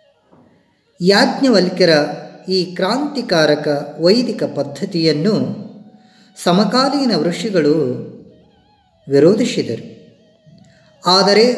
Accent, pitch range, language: native, 165-230 Hz, Kannada